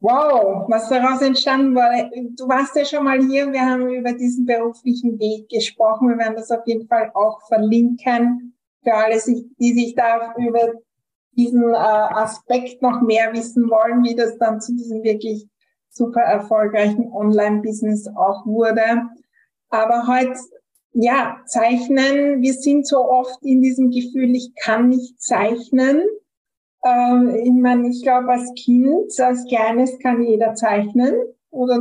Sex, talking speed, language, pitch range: female, 145 wpm, German, 215-250 Hz